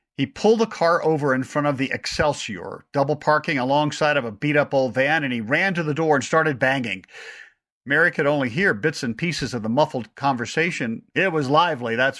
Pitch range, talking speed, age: 130-170 Hz, 205 wpm, 50-69